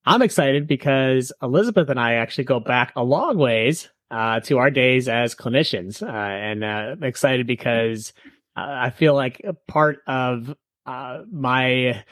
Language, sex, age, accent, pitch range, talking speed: English, male, 30-49, American, 115-145 Hz, 165 wpm